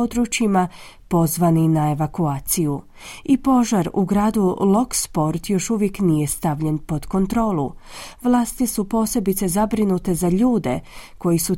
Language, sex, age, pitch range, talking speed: Croatian, female, 30-49, 170-230 Hz, 125 wpm